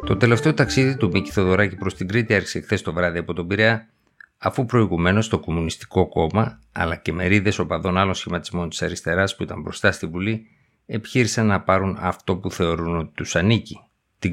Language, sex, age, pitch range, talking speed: Greek, male, 50-69, 85-100 Hz, 185 wpm